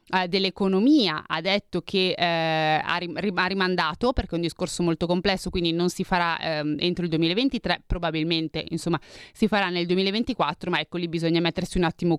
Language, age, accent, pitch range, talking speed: Italian, 30-49, native, 175-200 Hz, 165 wpm